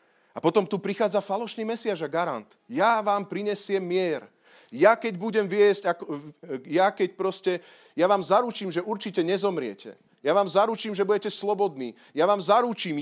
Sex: male